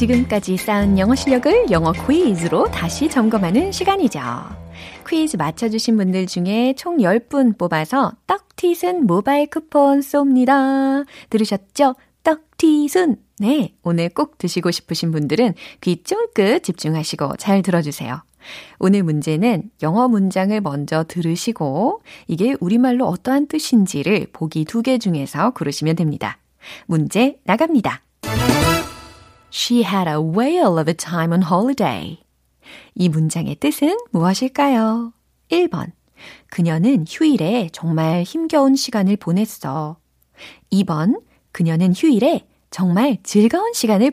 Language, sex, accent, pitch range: Korean, female, native, 170-265 Hz